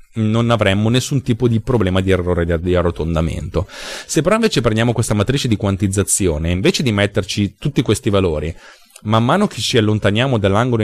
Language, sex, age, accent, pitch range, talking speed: Italian, male, 30-49, native, 95-125 Hz, 165 wpm